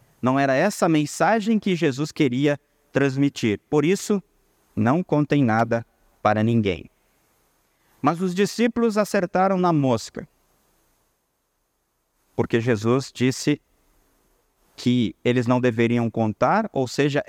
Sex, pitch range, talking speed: male, 125-185 Hz, 110 wpm